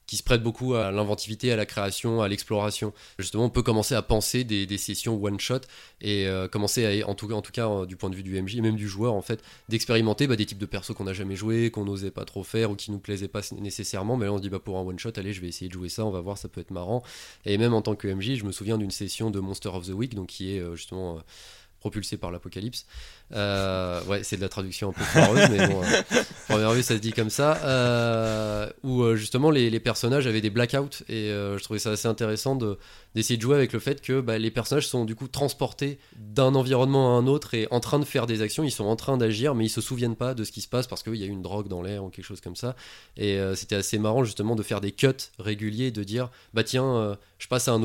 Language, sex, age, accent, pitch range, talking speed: French, male, 20-39, French, 100-120 Hz, 280 wpm